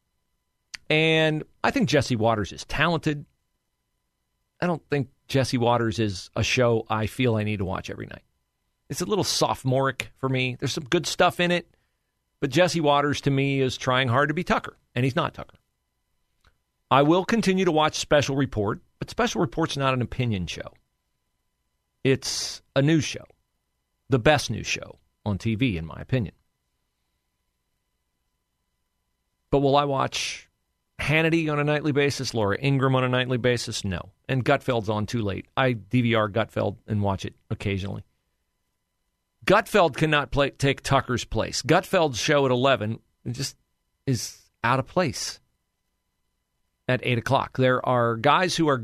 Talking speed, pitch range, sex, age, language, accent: 155 wpm, 100-140 Hz, male, 40-59, English, American